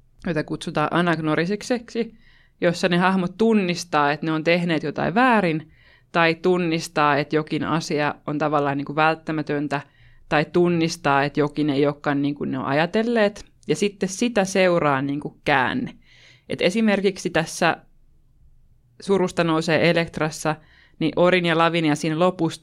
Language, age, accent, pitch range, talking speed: Finnish, 20-39, native, 145-175 Hz, 145 wpm